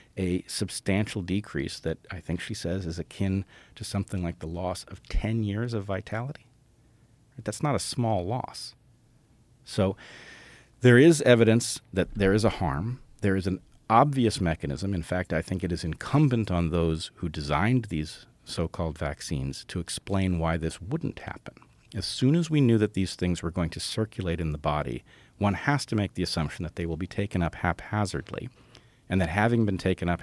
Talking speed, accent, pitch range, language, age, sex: 185 wpm, American, 85-120 Hz, English, 40-59, male